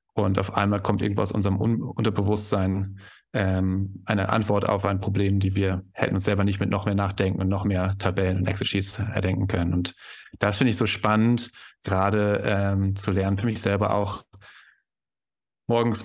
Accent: German